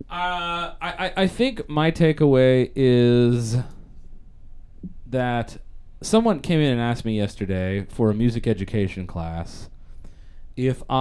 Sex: male